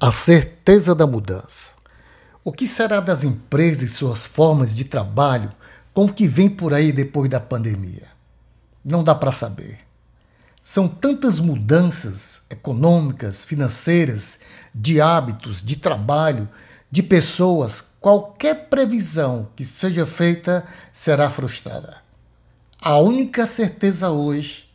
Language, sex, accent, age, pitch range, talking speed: Portuguese, male, Brazilian, 60-79, 130-185 Hz, 120 wpm